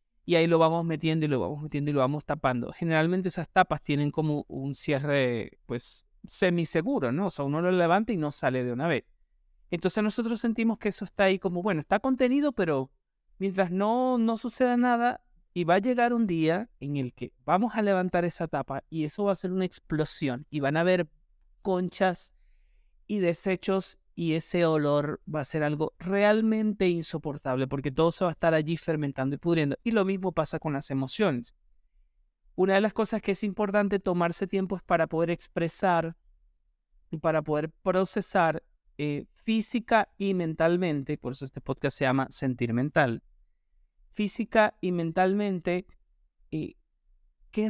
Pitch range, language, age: 145-195 Hz, Spanish, 30-49